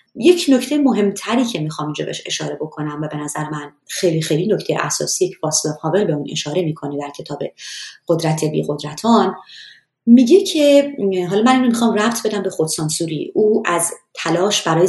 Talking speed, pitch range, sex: 170 wpm, 155-210 Hz, female